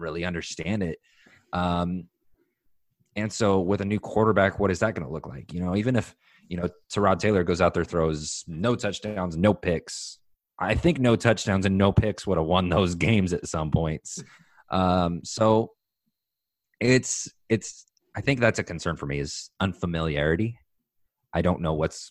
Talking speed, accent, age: 175 wpm, American, 30-49